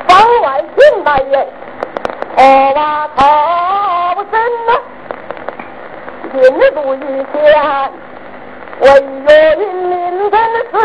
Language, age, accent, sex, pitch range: Chinese, 50-69, American, female, 290-400 Hz